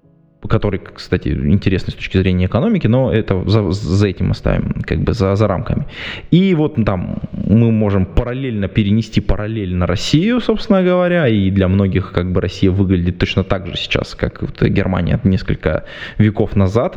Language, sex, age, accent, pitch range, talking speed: Russian, male, 20-39, native, 90-115 Hz, 165 wpm